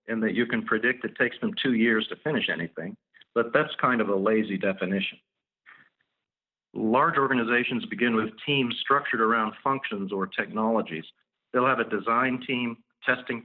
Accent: American